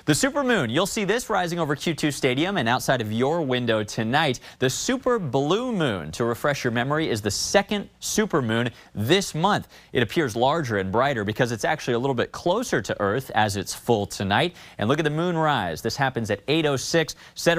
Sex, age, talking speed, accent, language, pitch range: male, 30-49, 200 wpm, American, English, 115-155 Hz